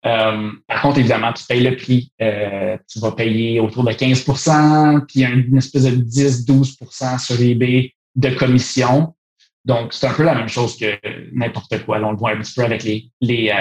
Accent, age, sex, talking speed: Canadian, 30-49, male, 195 wpm